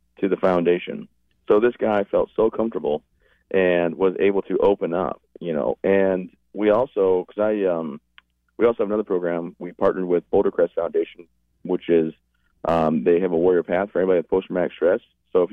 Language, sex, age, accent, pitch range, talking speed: English, male, 30-49, American, 80-100 Hz, 185 wpm